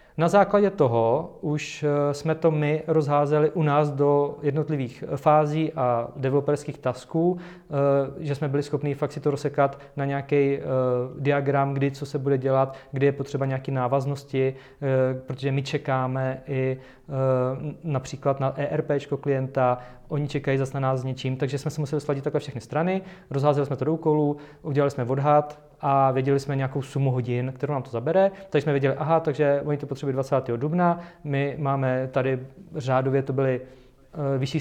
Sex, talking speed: male, 165 wpm